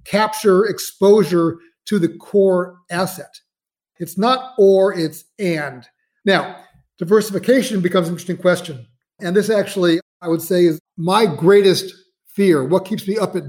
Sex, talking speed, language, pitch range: male, 140 wpm, English, 170-205 Hz